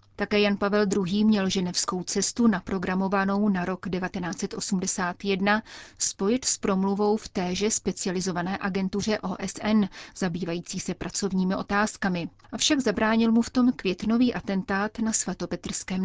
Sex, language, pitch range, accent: female, Czech, 185-220 Hz, native